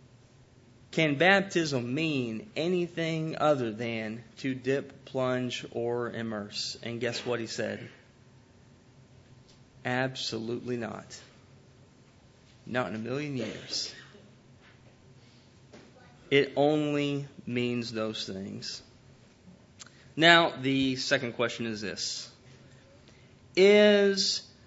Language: English